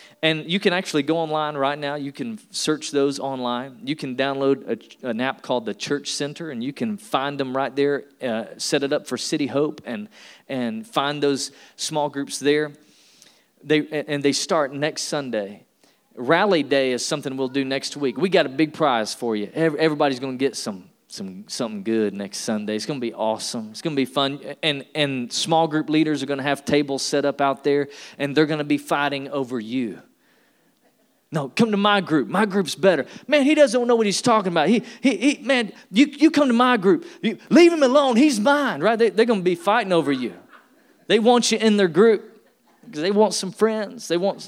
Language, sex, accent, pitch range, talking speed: English, male, American, 140-215 Hz, 210 wpm